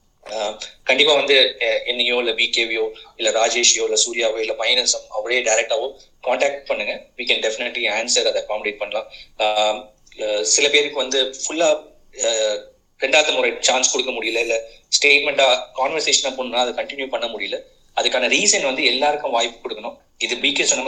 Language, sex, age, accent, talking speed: Tamil, male, 30-49, native, 110 wpm